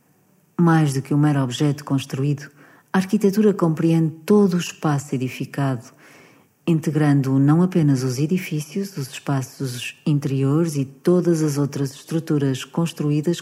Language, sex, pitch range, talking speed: Portuguese, female, 135-165 Hz, 130 wpm